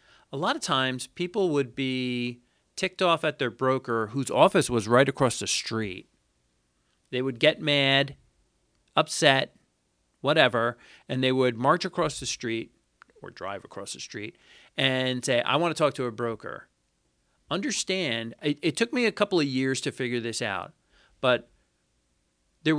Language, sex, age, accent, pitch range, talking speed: English, male, 40-59, American, 115-150 Hz, 160 wpm